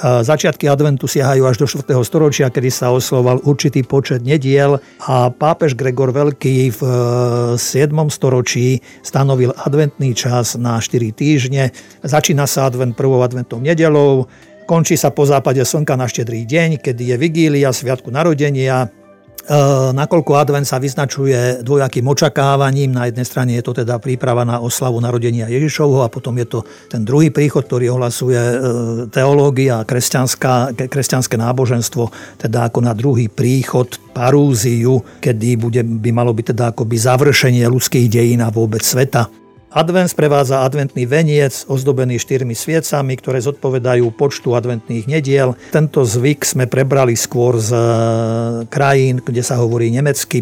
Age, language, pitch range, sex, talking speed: 50-69, Slovak, 120-145 Hz, male, 140 wpm